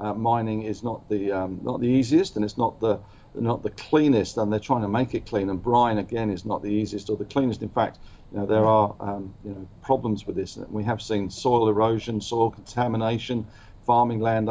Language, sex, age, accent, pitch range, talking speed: English, male, 50-69, British, 100-115 Hz, 230 wpm